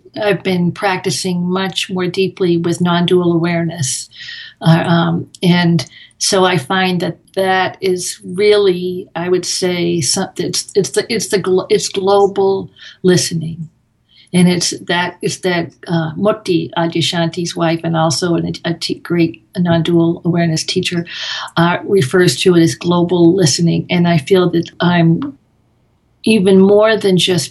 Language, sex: English, female